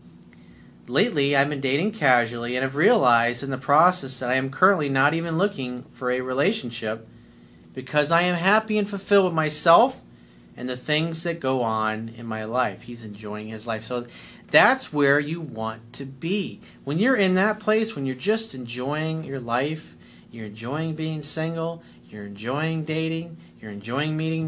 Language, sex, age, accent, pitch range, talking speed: English, male, 40-59, American, 115-155 Hz, 170 wpm